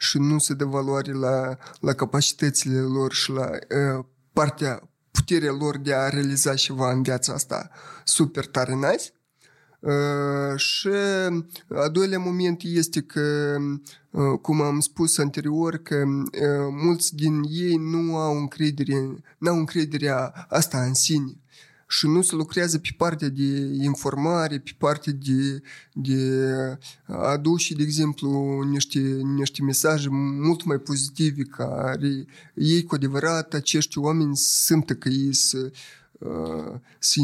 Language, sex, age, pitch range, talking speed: Romanian, male, 20-39, 135-160 Hz, 130 wpm